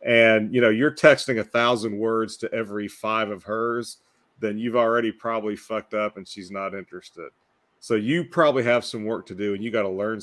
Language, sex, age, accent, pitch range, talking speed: English, male, 40-59, American, 100-120 Hz, 210 wpm